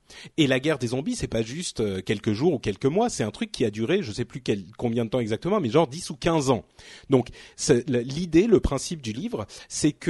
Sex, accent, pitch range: male, French, 120-175 Hz